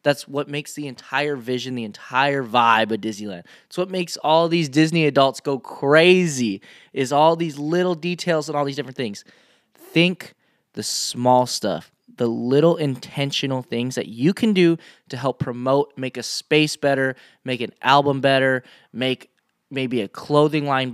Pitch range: 125-155 Hz